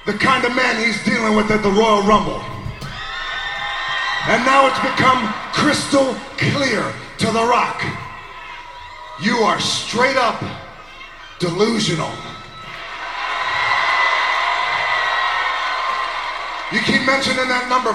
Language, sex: English, male